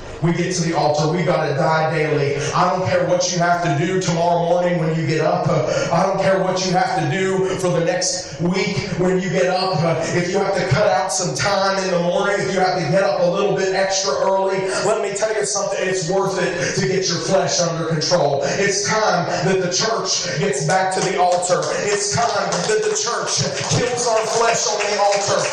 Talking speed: 230 wpm